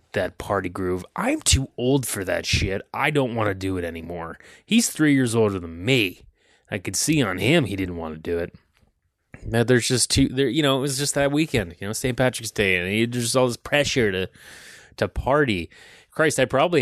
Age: 30-49